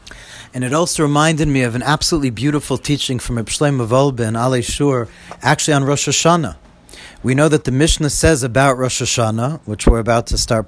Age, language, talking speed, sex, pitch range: 40-59, English, 190 wpm, male, 120-155 Hz